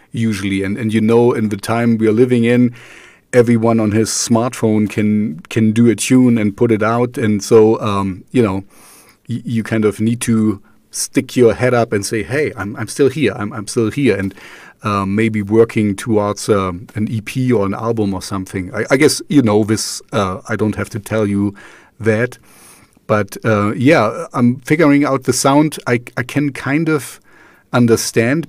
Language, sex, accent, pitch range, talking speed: English, male, German, 110-130 Hz, 195 wpm